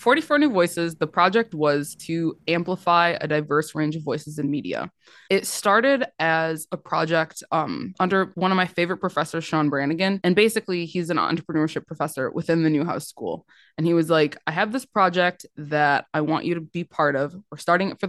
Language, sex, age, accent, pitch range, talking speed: English, female, 20-39, American, 155-190 Hz, 195 wpm